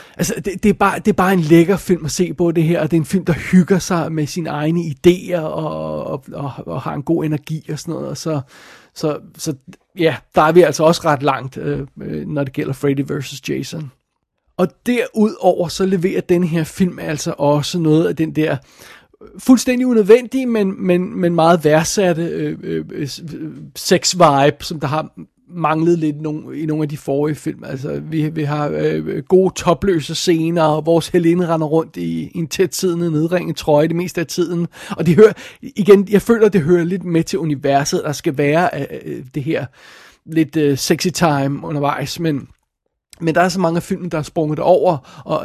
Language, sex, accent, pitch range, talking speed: Danish, male, native, 150-180 Hz, 190 wpm